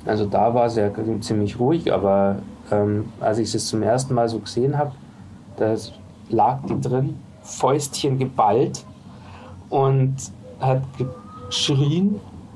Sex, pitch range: male, 105-140 Hz